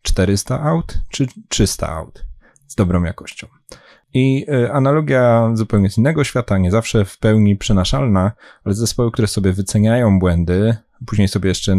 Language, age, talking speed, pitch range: Polish, 30-49, 145 wpm, 90-110 Hz